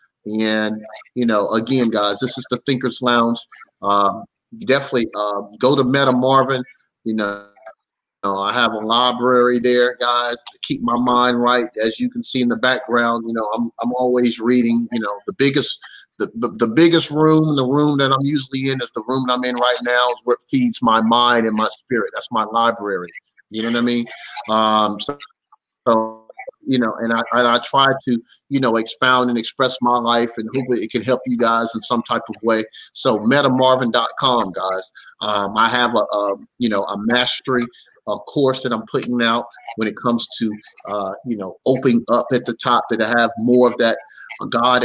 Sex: male